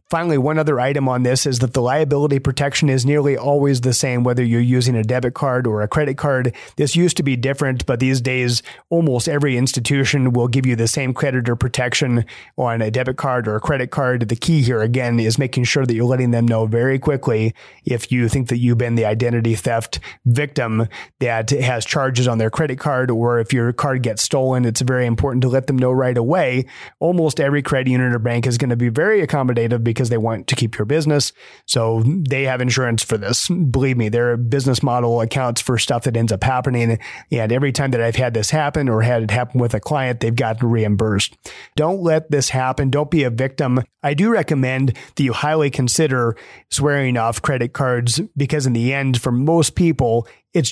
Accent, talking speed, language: American, 215 wpm, English